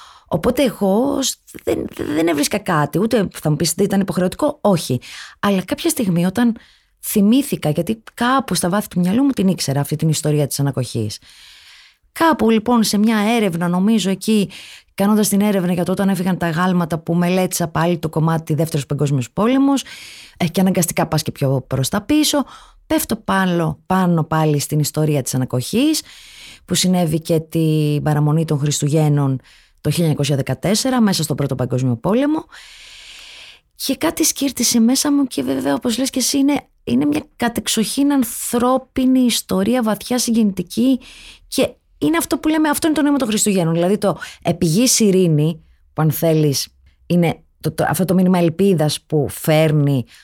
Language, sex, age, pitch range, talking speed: English, female, 20-39, 150-240 Hz, 160 wpm